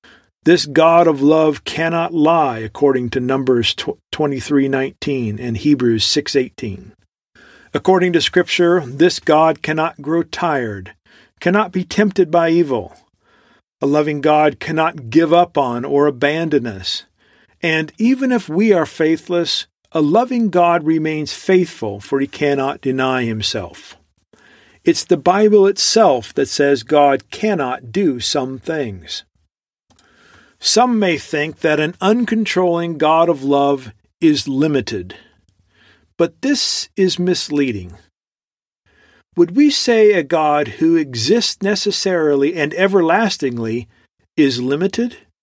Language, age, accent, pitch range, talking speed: English, 50-69, American, 135-185 Hz, 120 wpm